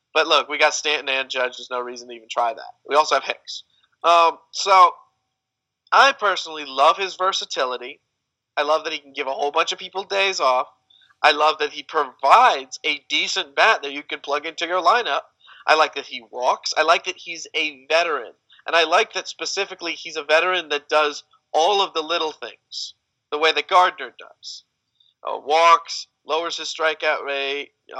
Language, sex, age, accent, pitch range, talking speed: English, male, 40-59, American, 130-165 Hz, 195 wpm